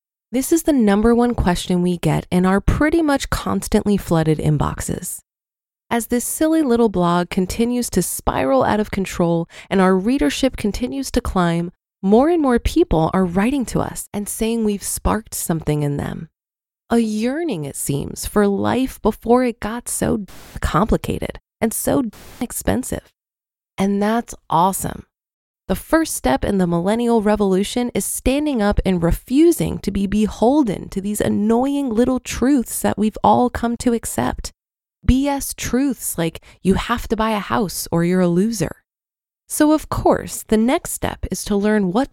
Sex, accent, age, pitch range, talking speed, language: female, American, 20-39, 185-245 Hz, 160 wpm, English